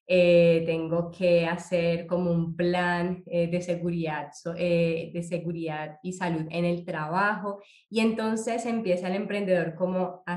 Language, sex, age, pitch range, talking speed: Spanish, female, 20-39, 175-205 Hz, 150 wpm